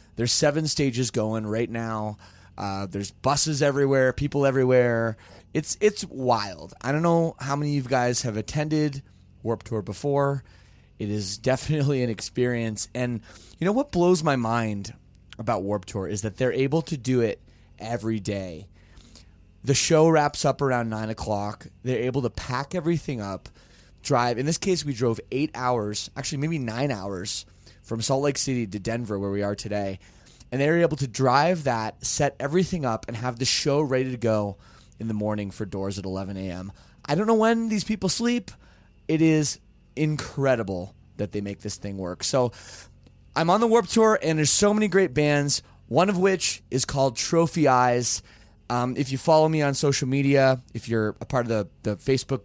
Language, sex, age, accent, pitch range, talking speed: English, male, 20-39, American, 105-145 Hz, 185 wpm